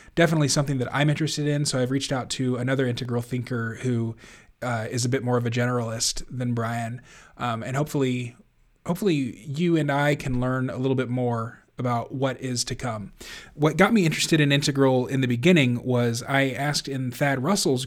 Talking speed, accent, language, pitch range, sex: 195 wpm, American, English, 120-140 Hz, male